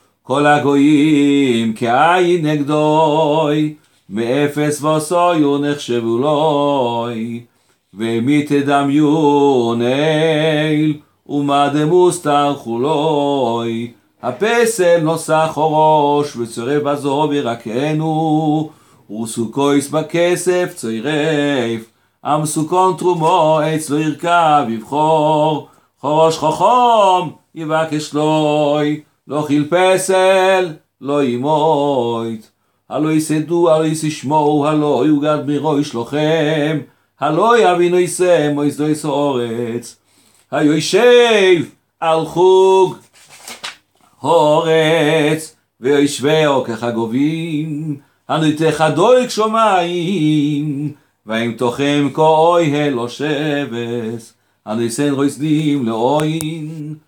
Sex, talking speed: male, 70 wpm